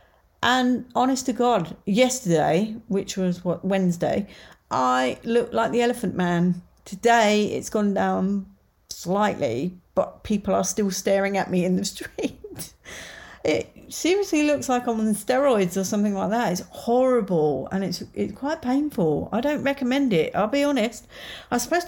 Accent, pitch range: British, 185-245 Hz